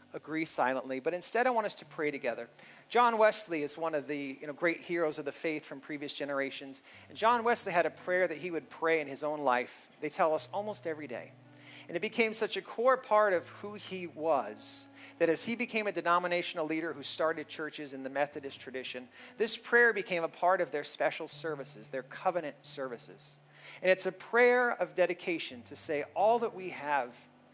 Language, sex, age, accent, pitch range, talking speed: English, male, 40-59, American, 140-190 Hz, 205 wpm